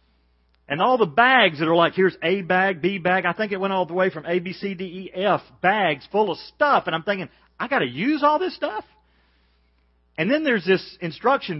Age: 40-59